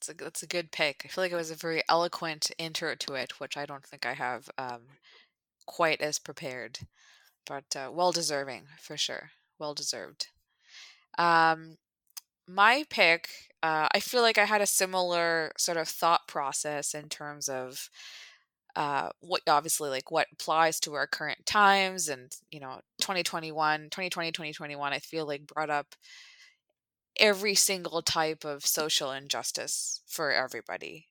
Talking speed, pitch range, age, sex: 165 wpm, 145-175 Hz, 20-39, female